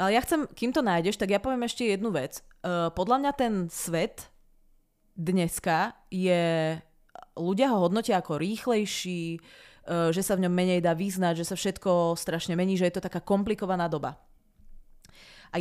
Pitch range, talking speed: 170-205 Hz, 165 wpm